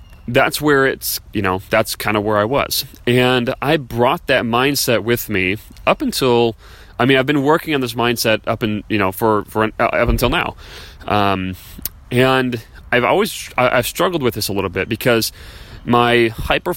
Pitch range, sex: 95-135 Hz, male